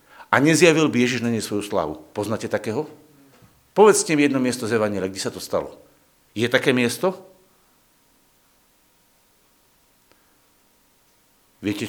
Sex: male